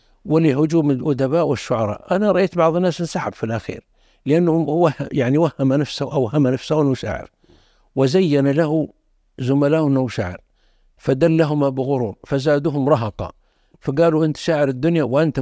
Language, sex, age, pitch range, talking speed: Arabic, male, 60-79, 130-165 Hz, 125 wpm